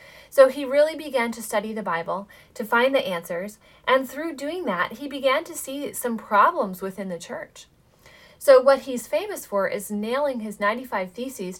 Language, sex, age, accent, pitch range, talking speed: English, female, 30-49, American, 200-270 Hz, 180 wpm